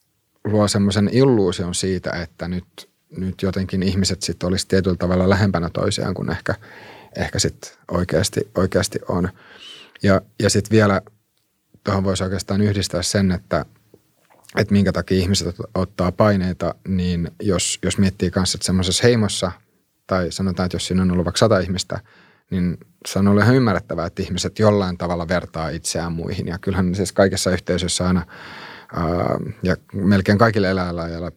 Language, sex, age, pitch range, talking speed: Finnish, male, 30-49, 90-105 Hz, 150 wpm